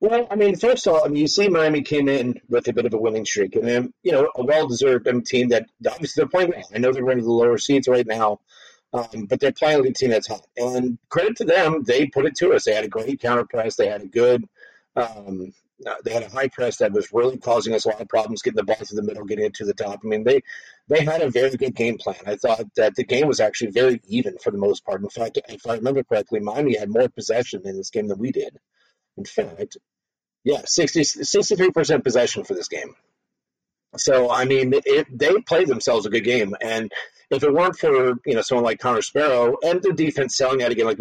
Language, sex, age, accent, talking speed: English, male, 40-59, American, 250 wpm